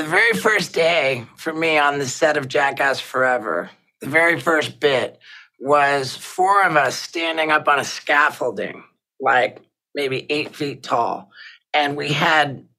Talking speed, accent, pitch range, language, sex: 155 wpm, American, 145-175 Hz, English, male